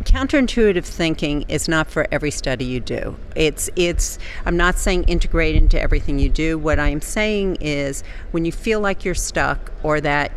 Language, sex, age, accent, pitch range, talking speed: English, female, 50-69, American, 135-160 Hz, 180 wpm